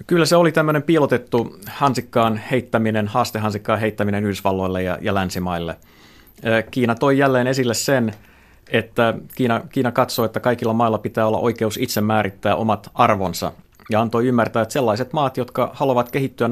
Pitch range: 100-120 Hz